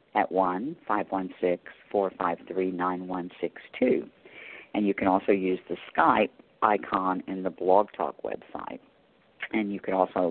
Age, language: 50-69, English